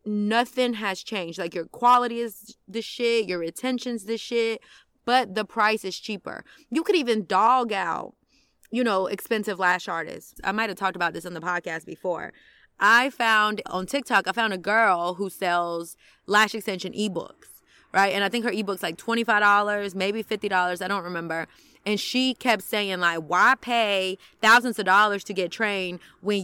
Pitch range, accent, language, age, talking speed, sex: 185-230 Hz, American, English, 20-39, 185 wpm, female